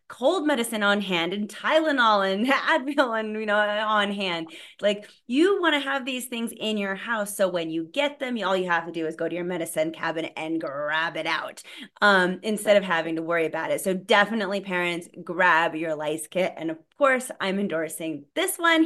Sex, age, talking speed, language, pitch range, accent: female, 30-49, 205 wpm, English, 190-290 Hz, American